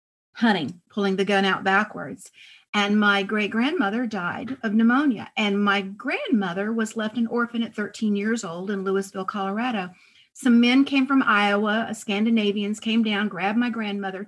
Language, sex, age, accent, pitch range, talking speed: English, female, 40-59, American, 195-235 Hz, 155 wpm